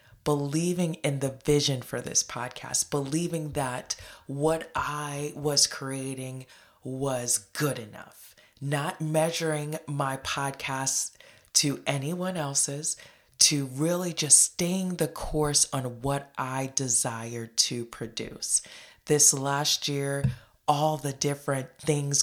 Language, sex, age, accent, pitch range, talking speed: English, female, 30-49, American, 130-155 Hz, 115 wpm